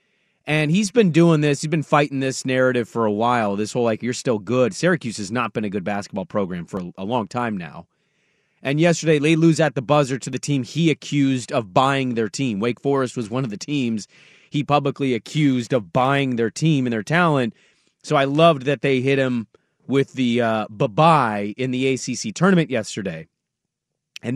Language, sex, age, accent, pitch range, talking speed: English, male, 30-49, American, 130-180 Hz, 200 wpm